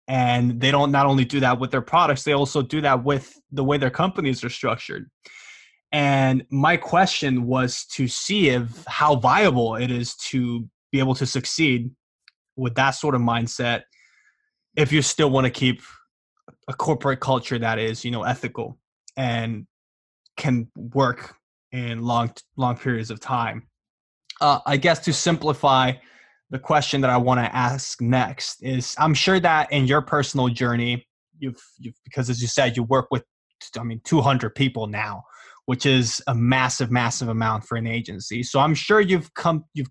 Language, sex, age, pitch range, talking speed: English, male, 20-39, 120-145 Hz, 175 wpm